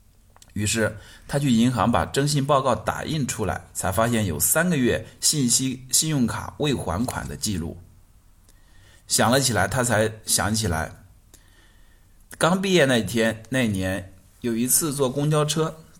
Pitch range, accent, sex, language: 90-130 Hz, native, male, Chinese